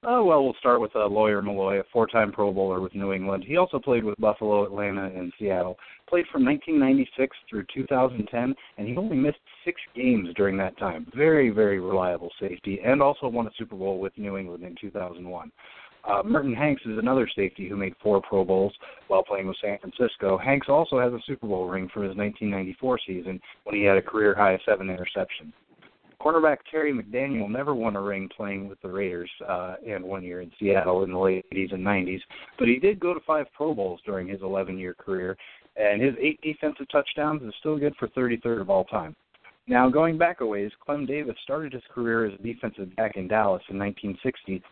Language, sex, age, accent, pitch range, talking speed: English, male, 30-49, American, 95-135 Hz, 205 wpm